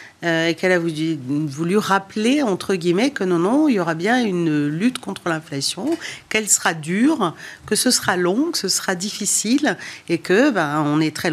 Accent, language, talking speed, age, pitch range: French, French, 185 wpm, 50-69, 170-220 Hz